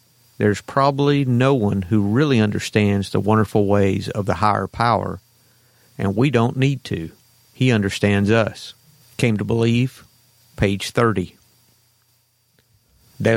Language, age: English, 50-69